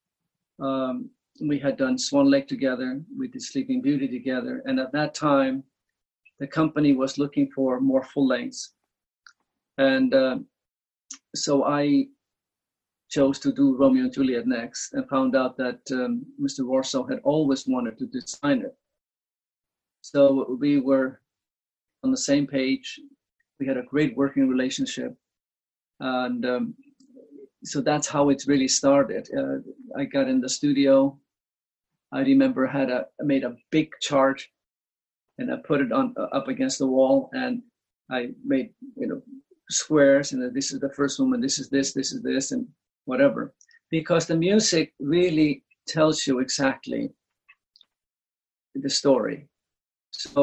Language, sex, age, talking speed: English, male, 40-59, 145 wpm